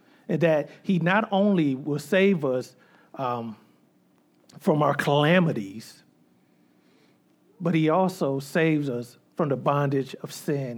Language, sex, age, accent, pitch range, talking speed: English, male, 50-69, American, 125-165 Hz, 120 wpm